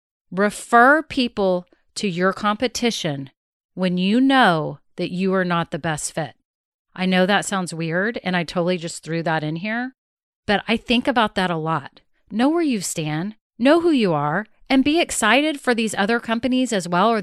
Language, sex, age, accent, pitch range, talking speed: English, female, 40-59, American, 180-240 Hz, 185 wpm